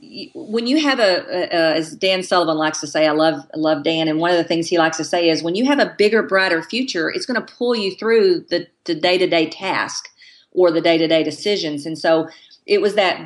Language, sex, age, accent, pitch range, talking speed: English, female, 40-59, American, 160-210 Hz, 230 wpm